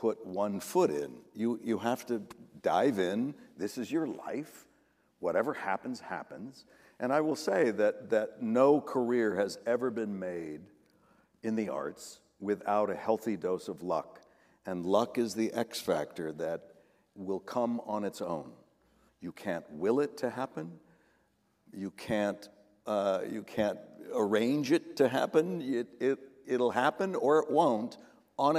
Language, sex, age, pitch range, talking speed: English, male, 60-79, 105-135 Hz, 155 wpm